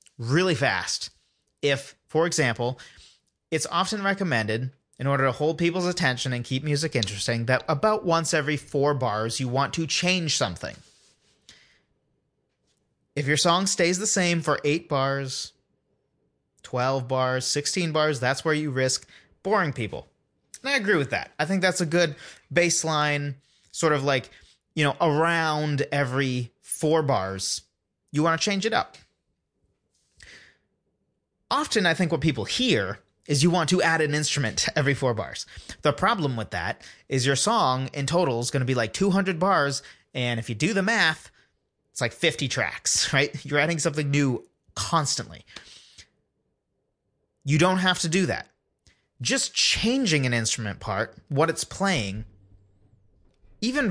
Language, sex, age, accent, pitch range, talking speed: English, male, 30-49, American, 130-175 Hz, 155 wpm